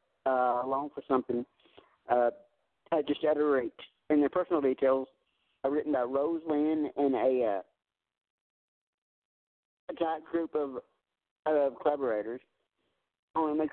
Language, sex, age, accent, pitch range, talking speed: English, male, 50-69, American, 145-205 Hz, 145 wpm